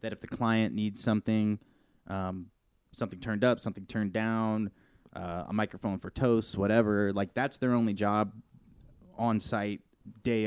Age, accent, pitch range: 20-39, American, 100-120 Hz